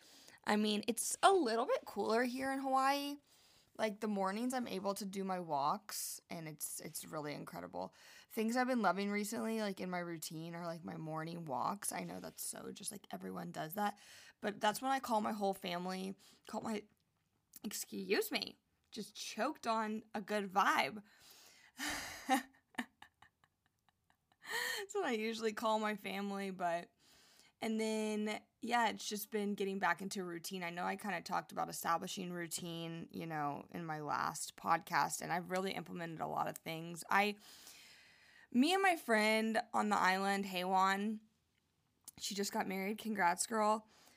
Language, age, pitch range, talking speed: English, 20-39, 180-225 Hz, 165 wpm